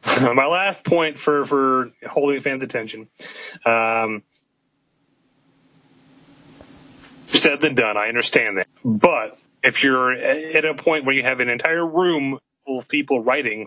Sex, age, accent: male, 30-49, American